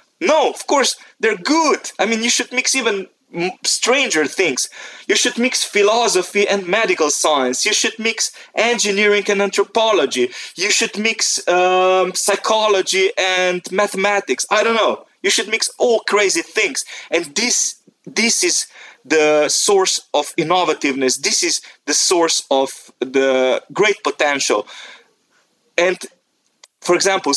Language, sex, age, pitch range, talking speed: English, male, 30-49, 145-210 Hz, 135 wpm